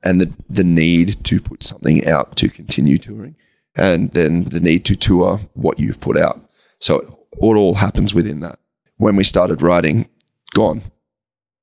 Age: 30-49